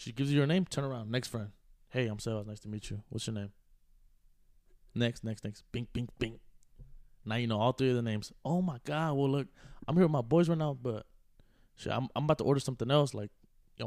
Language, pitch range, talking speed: English, 105-140 Hz, 240 wpm